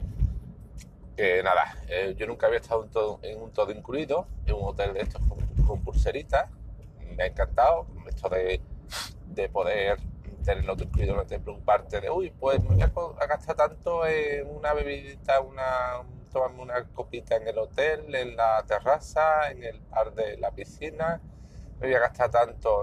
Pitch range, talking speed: 110-160 Hz, 175 wpm